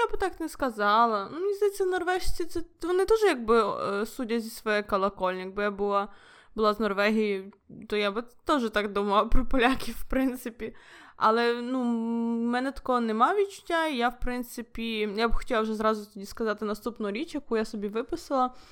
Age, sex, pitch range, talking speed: 20-39, female, 205-245 Hz, 175 wpm